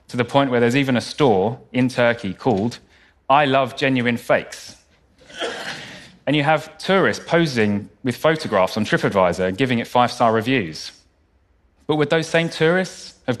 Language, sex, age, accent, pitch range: Korean, male, 30-49, British, 90-135 Hz